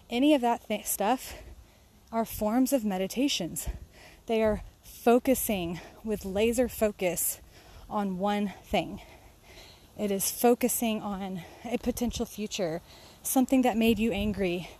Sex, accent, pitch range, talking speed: female, American, 185-225 Hz, 120 wpm